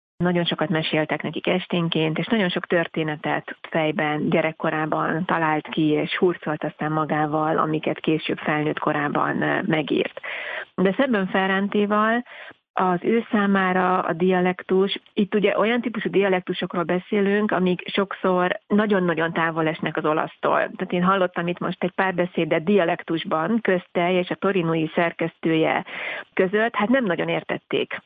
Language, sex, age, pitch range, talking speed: Hungarian, female, 30-49, 165-195 Hz, 135 wpm